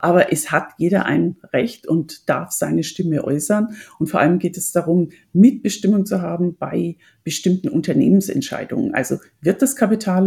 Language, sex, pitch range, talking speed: German, female, 155-195 Hz, 160 wpm